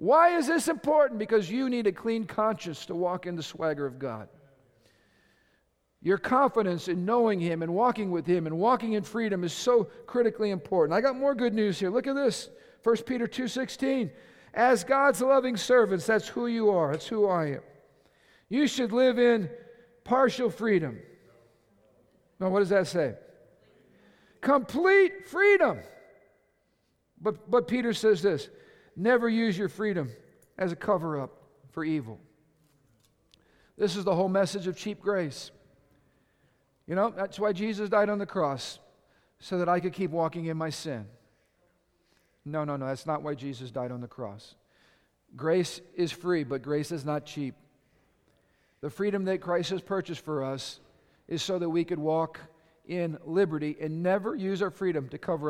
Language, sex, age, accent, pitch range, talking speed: English, male, 50-69, American, 150-225 Hz, 165 wpm